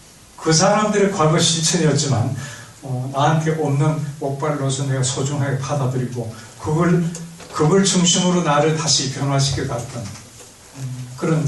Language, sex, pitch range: Korean, male, 135-175 Hz